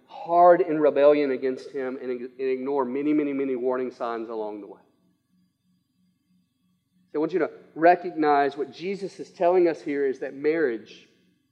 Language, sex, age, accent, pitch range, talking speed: English, male, 40-59, American, 160-240 Hz, 155 wpm